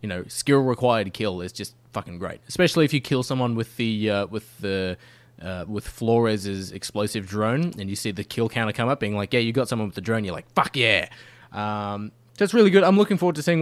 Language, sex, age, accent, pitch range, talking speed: English, male, 20-39, Australian, 105-130 Hz, 240 wpm